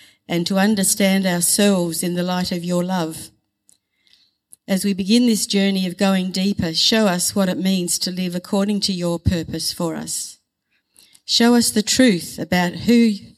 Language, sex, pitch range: English, female, 175-205 Hz